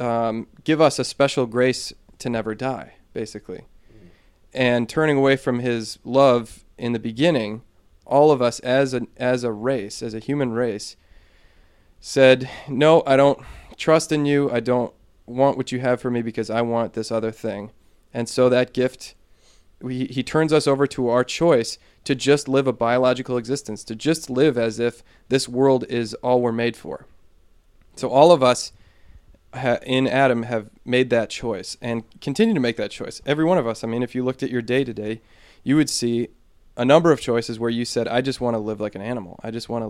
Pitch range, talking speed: 110-135 Hz, 195 wpm